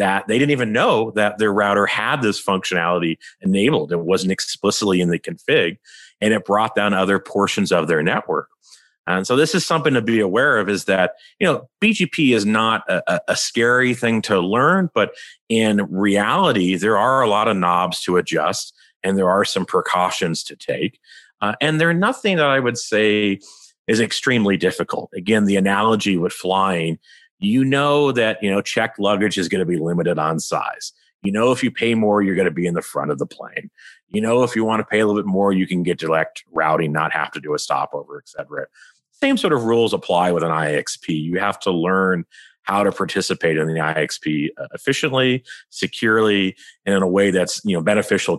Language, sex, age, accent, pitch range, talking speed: English, male, 40-59, American, 90-115 Hz, 205 wpm